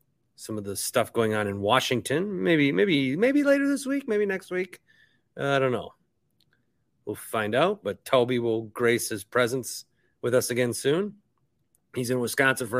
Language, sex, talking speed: English, male, 175 wpm